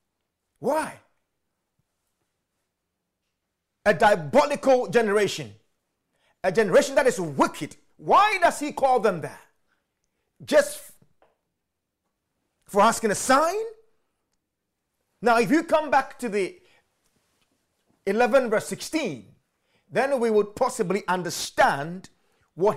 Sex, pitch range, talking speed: male, 190-300 Hz, 95 wpm